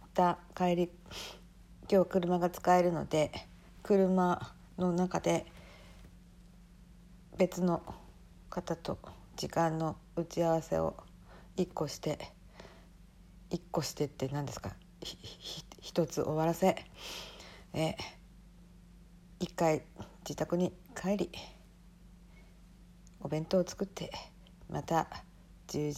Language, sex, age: Japanese, female, 60-79